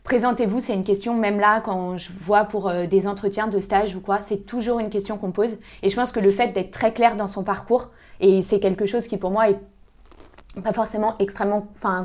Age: 20-39